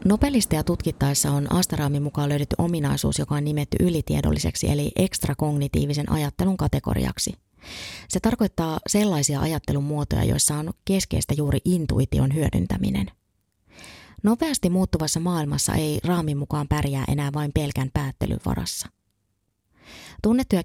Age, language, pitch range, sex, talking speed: 30-49, Finnish, 120-175 Hz, female, 115 wpm